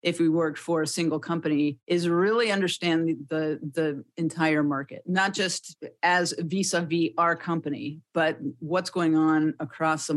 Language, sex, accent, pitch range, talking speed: English, female, American, 150-175 Hz, 160 wpm